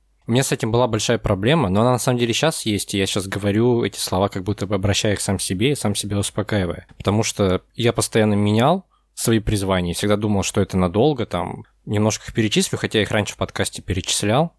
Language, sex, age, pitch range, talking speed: Russian, male, 20-39, 95-115 Hz, 220 wpm